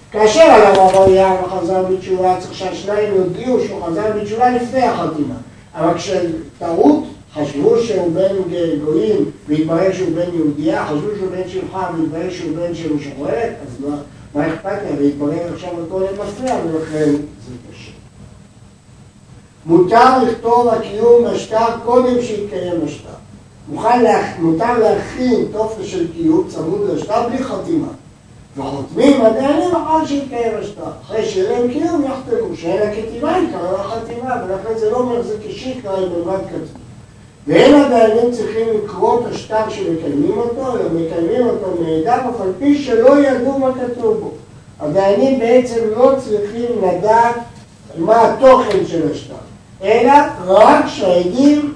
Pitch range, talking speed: 165-240 Hz, 135 wpm